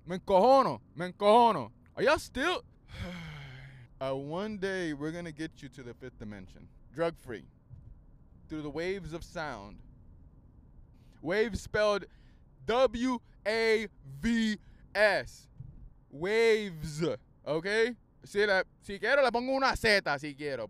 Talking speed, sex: 115 wpm, male